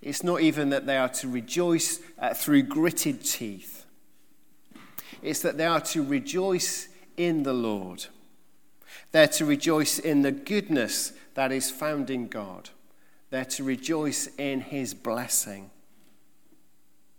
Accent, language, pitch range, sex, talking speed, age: British, English, 130-180 Hz, male, 135 wpm, 50-69